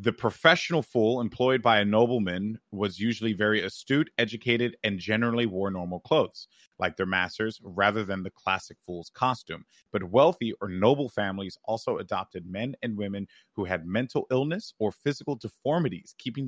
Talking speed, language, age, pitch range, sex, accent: 160 wpm, English, 30-49, 100-125 Hz, male, American